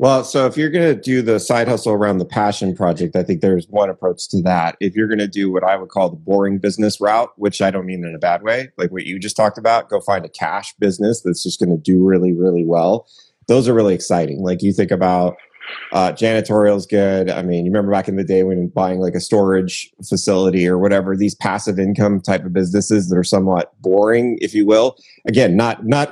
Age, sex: 30-49, male